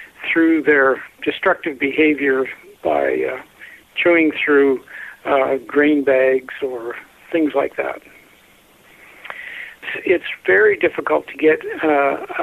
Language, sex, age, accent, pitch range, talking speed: English, male, 60-79, American, 145-210 Hz, 105 wpm